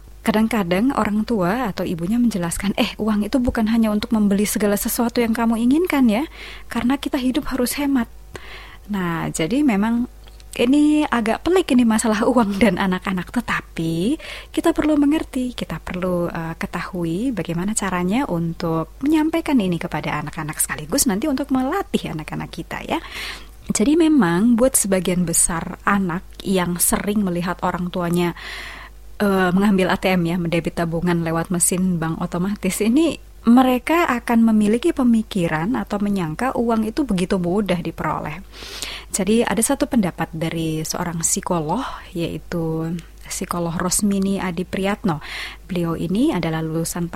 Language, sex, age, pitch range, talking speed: Indonesian, female, 20-39, 175-235 Hz, 135 wpm